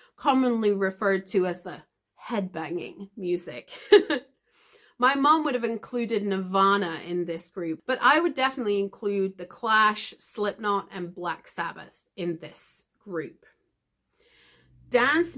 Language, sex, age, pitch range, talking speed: English, female, 30-49, 190-270 Hz, 120 wpm